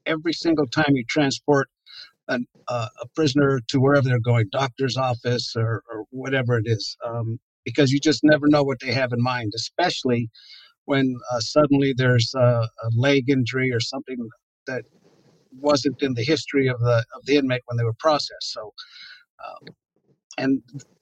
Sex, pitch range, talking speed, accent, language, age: male, 125-155 Hz, 170 wpm, American, English, 50-69